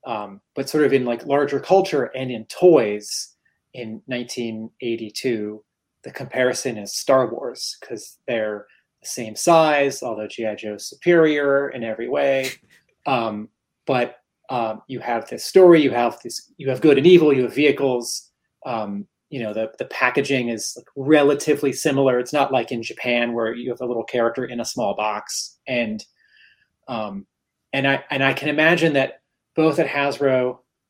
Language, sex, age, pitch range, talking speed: English, male, 30-49, 115-150 Hz, 165 wpm